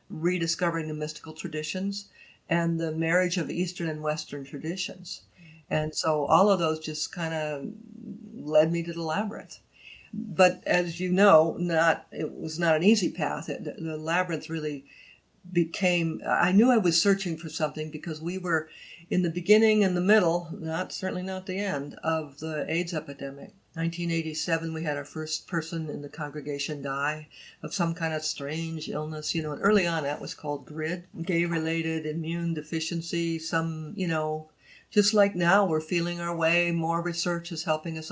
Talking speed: 170 wpm